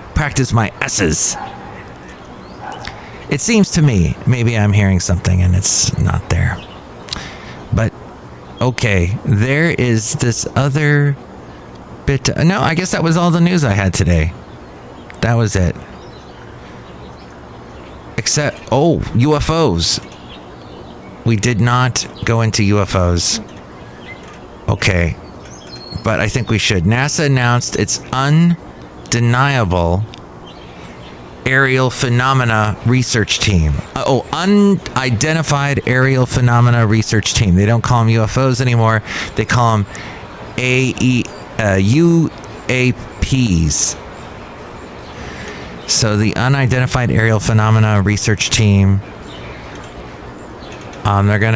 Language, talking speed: English, 100 wpm